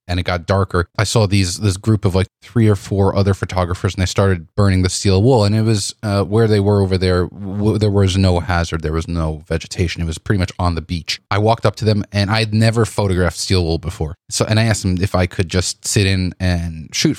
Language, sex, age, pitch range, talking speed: English, male, 30-49, 90-110 Hz, 250 wpm